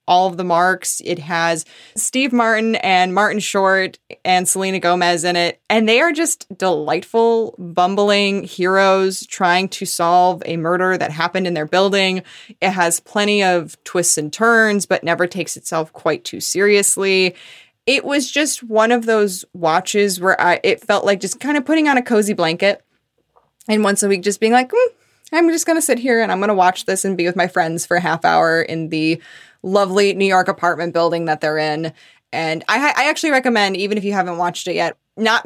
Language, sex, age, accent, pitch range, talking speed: English, female, 20-39, American, 170-220 Hz, 200 wpm